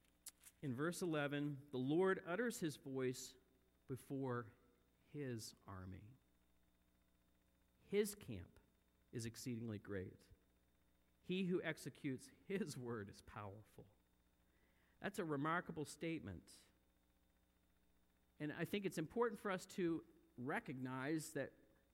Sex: male